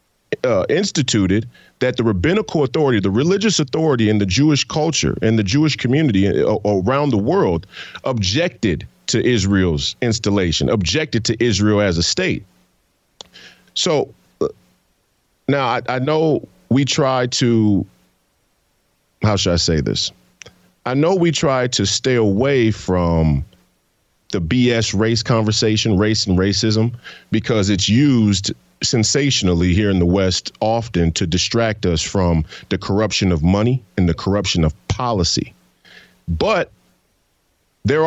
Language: English